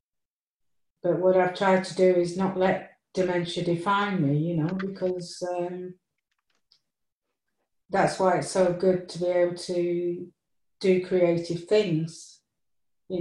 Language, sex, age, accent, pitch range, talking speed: English, female, 40-59, British, 155-180 Hz, 130 wpm